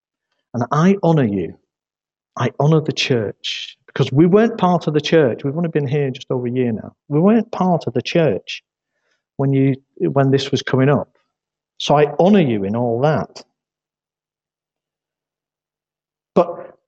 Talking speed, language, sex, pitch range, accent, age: 160 wpm, English, male, 140-205 Hz, British, 50-69